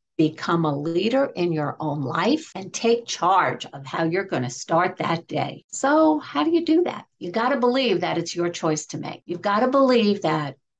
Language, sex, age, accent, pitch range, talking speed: English, female, 60-79, American, 165-225 Hz, 215 wpm